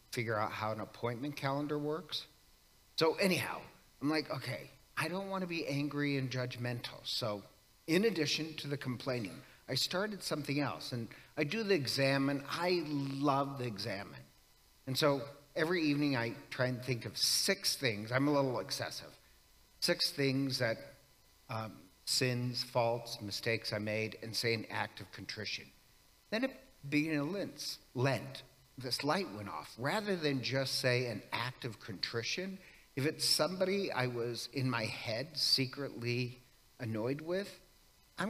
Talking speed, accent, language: 150 wpm, American, English